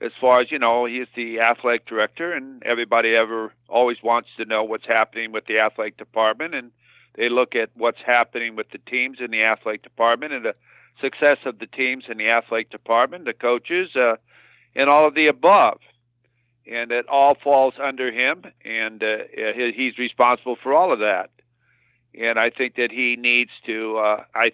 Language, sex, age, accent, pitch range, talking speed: English, male, 50-69, American, 115-130 Hz, 190 wpm